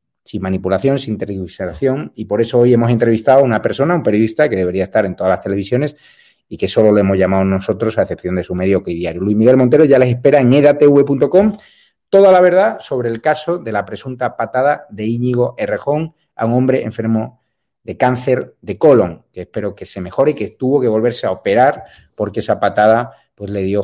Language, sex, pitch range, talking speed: Spanish, male, 105-135 Hz, 210 wpm